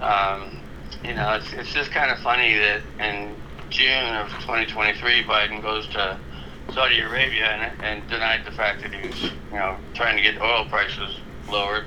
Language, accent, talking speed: English, American, 175 wpm